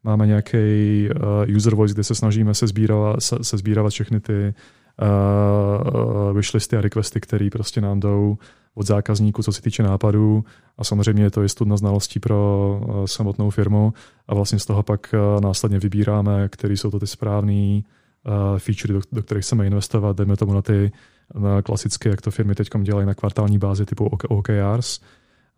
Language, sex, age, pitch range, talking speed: Czech, male, 20-39, 100-110 Hz, 165 wpm